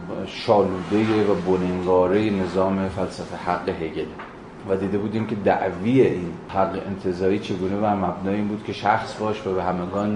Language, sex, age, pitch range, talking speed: Persian, male, 30-49, 90-105 Hz, 150 wpm